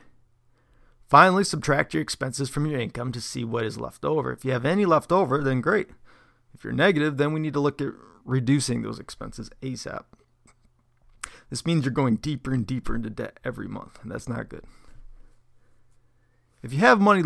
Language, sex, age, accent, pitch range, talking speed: English, male, 30-49, American, 120-145 Hz, 185 wpm